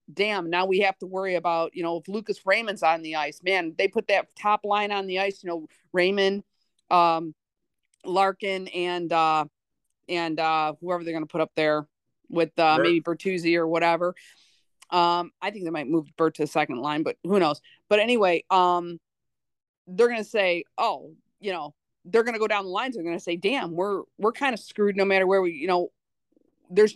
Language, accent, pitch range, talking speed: English, American, 170-205 Hz, 205 wpm